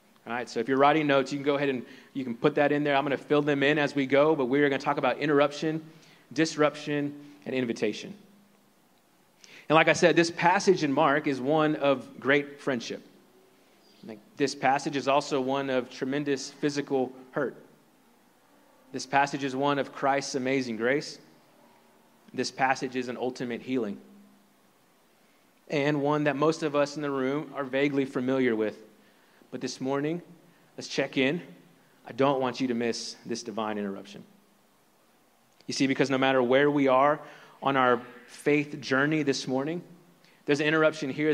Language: English